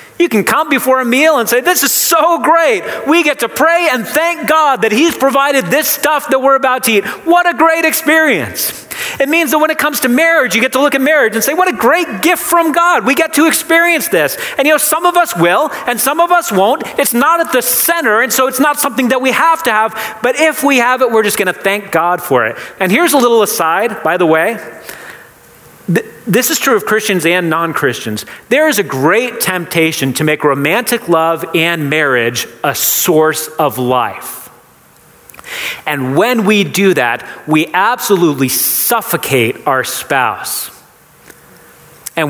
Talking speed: 200 wpm